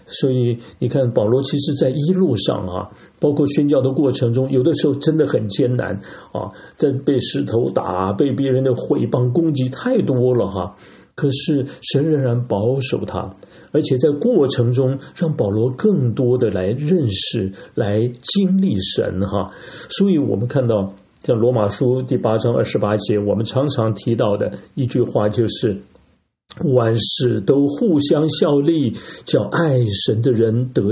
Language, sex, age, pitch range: Chinese, male, 50-69, 110-145 Hz